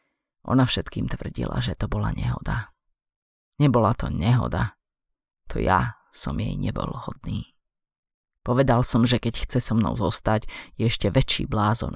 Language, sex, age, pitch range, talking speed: Slovak, female, 30-49, 105-130 Hz, 140 wpm